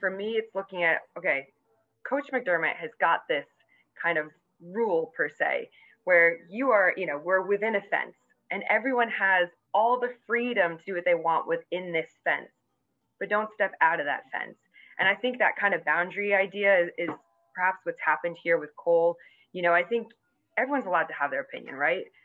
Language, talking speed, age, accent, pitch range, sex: English, 195 wpm, 20-39, American, 165-210 Hz, female